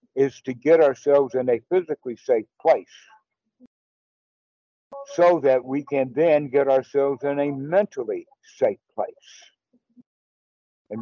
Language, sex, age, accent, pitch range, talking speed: English, male, 60-79, American, 135-200 Hz, 120 wpm